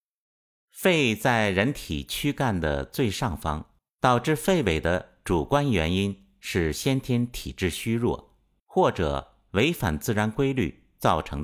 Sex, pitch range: male, 85-125 Hz